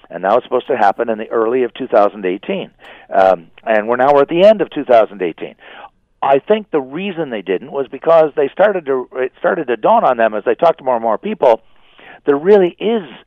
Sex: male